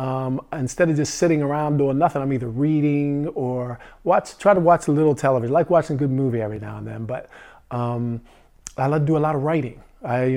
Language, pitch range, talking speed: English, 130-160 Hz, 235 wpm